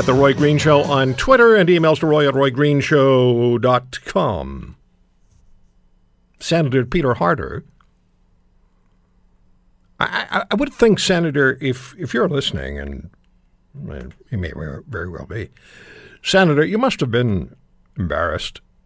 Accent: American